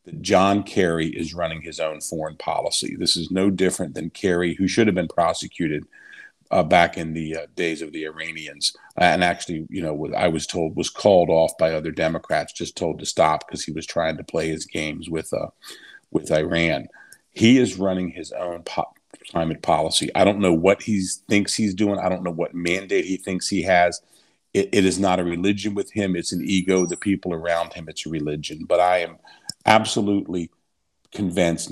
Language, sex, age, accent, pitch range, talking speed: English, male, 40-59, American, 85-100 Hz, 200 wpm